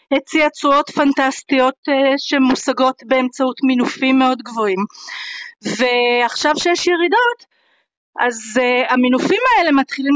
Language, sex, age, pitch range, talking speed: Hebrew, female, 30-49, 255-345 Hz, 90 wpm